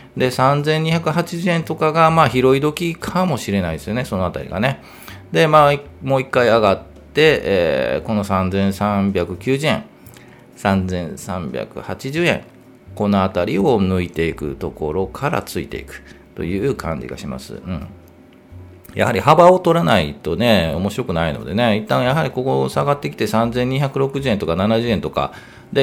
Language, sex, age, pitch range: Japanese, male, 40-59, 90-130 Hz